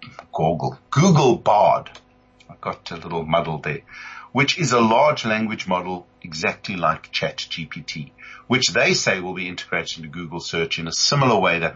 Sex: male